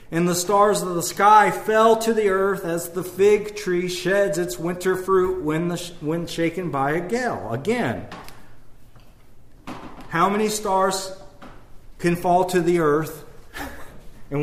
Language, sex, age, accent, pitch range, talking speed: English, male, 40-59, American, 150-210 Hz, 150 wpm